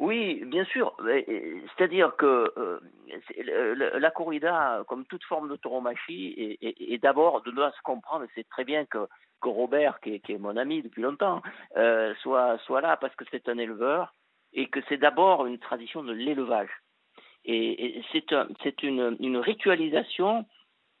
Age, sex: 50-69, male